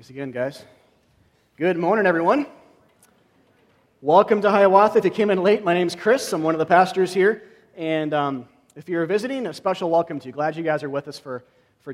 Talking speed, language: 205 wpm, English